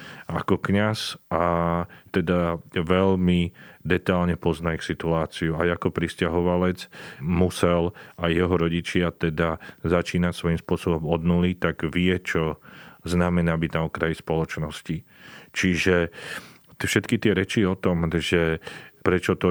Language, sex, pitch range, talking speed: Slovak, male, 85-95 Hz, 115 wpm